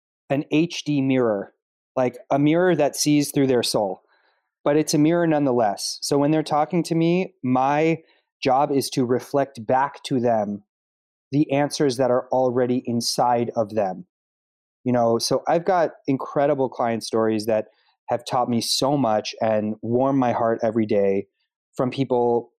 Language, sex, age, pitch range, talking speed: English, male, 30-49, 115-140 Hz, 160 wpm